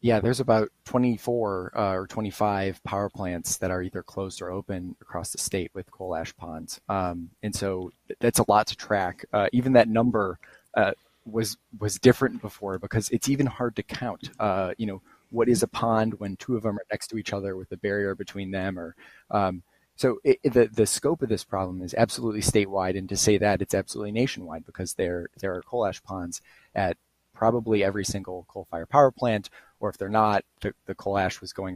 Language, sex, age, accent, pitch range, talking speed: English, male, 20-39, American, 95-110 Hz, 210 wpm